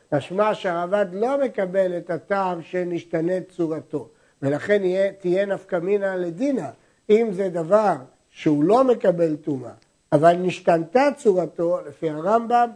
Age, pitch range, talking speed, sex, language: 60-79, 170-225 Hz, 120 wpm, male, Hebrew